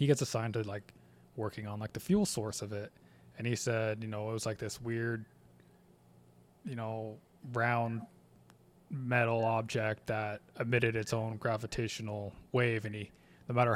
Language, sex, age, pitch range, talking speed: English, male, 20-39, 105-120 Hz, 165 wpm